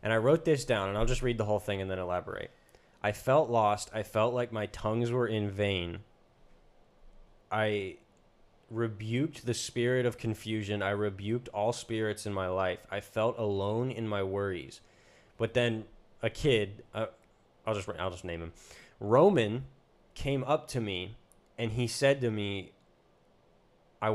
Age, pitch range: 20-39, 100-120 Hz